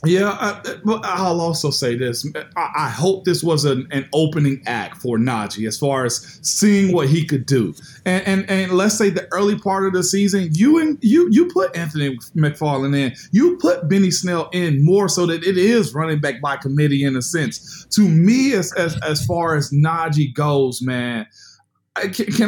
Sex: male